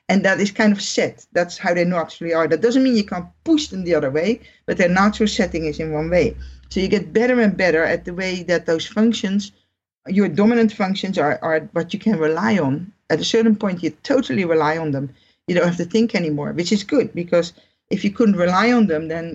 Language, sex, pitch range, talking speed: English, female, 160-220 Hz, 240 wpm